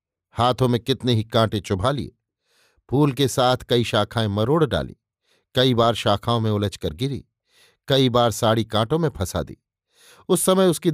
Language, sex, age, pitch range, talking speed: Hindi, male, 50-69, 110-140 Hz, 165 wpm